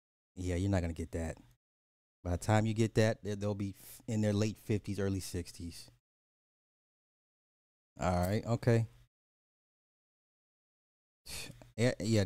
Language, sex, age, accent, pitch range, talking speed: English, male, 30-49, American, 95-130 Hz, 120 wpm